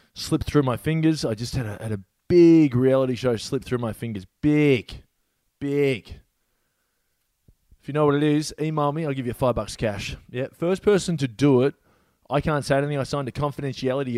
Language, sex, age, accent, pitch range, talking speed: English, male, 20-39, Australian, 120-150 Hz, 195 wpm